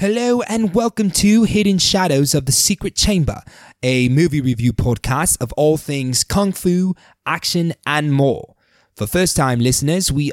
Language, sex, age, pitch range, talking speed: English, male, 20-39, 115-150 Hz, 155 wpm